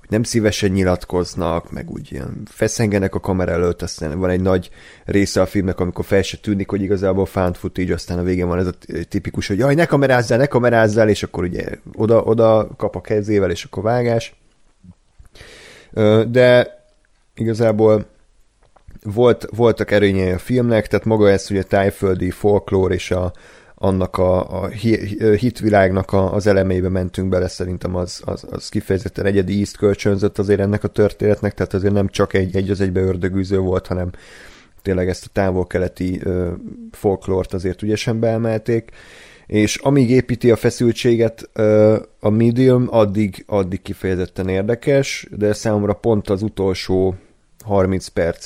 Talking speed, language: 145 wpm, Hungarian